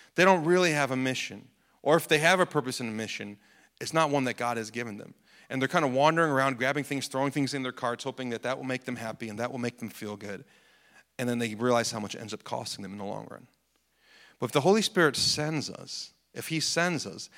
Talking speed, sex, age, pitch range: 260 wpm, male, 40-59, 120-155 Hz